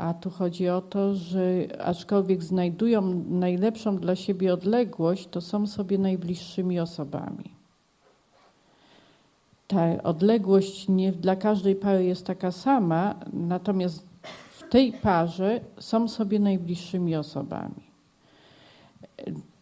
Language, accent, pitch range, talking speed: Polish, native, 180-210 Hz, 105 wpm